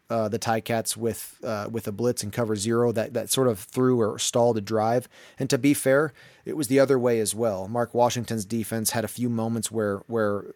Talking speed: 235 wpm